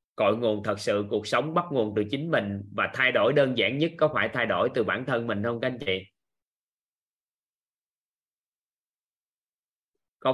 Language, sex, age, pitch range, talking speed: Vietnamese, male, 20-39, 110-155 Hz, 175 wpm